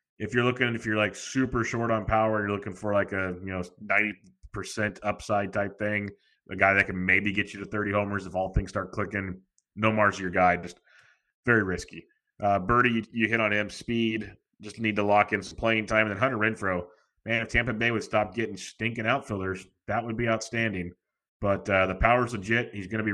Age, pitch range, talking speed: 30-49, 95-115 Hz, 225 wpm